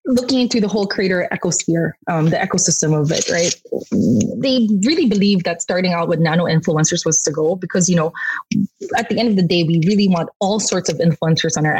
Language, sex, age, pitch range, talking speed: English, female, 20-39, 165-215 Hz, 215 wpm